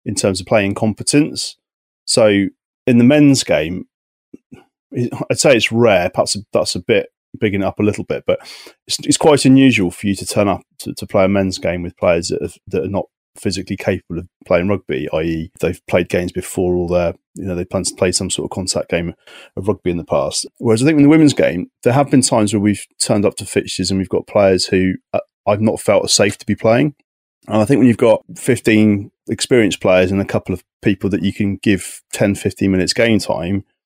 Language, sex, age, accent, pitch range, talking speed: English, male, 30-49, British, 95-120 Hz, 225 wpm